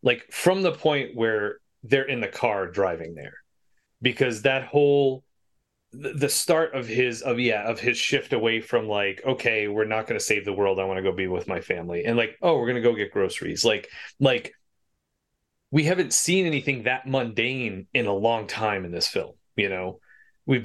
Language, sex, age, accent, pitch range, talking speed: English, male, 30-49, American, 105-145 Hz, 200 wpm